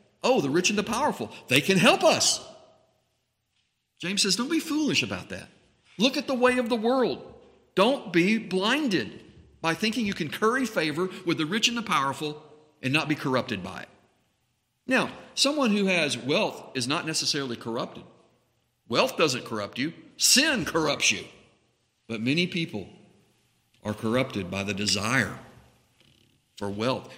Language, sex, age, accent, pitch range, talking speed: English, male, 50-69, American, 130-200 Hz, 155 wpm